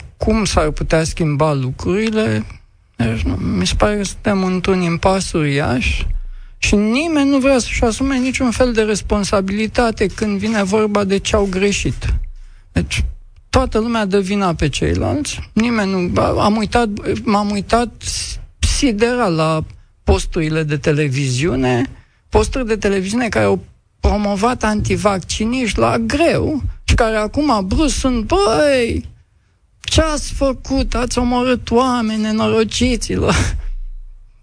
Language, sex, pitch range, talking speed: Romanian, male, 140-225 Hz, 125 wpm